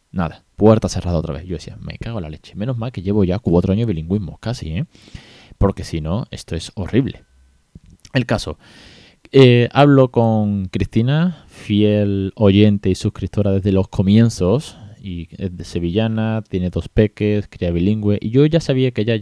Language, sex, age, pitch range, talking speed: Spanish, male, 20-39, 90-115 Hz, 180 wpm